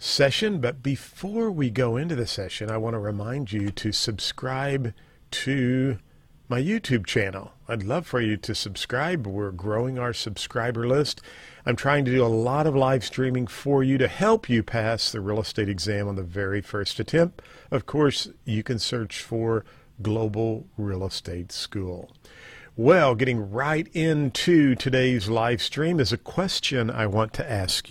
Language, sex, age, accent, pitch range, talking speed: English, male, 50-69, American, 110-140 Hz, 170 wpm